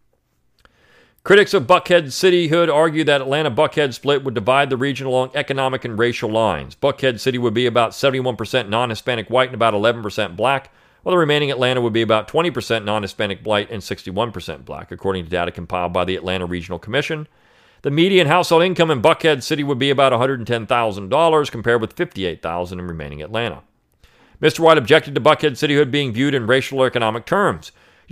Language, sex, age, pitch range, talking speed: English, male, 40-59, 110-150 Hz, 175 wpm